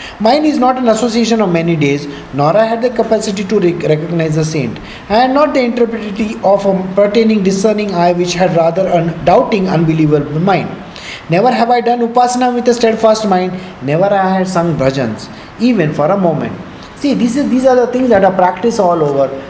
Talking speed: 205 wpm